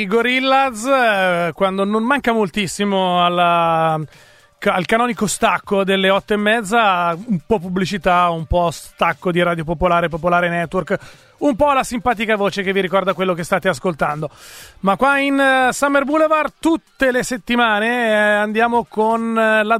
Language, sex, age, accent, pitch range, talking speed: Italian, male, 30-49, native, 180-230 Hz, 140 wpm